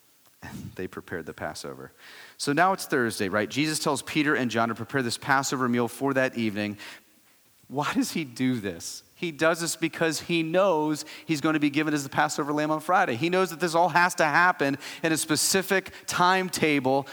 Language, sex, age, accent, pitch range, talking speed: English, male, 30-49, American, 100-150 Hz, 195 wpm